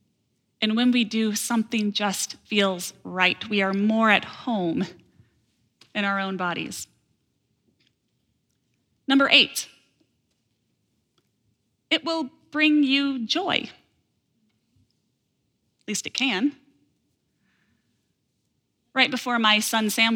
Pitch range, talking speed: 185-265 Hz, 100 wpm